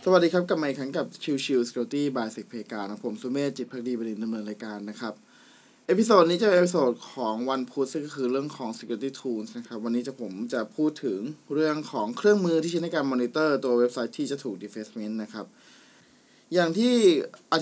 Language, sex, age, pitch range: Thai, male, 20-39, 130-165 Hz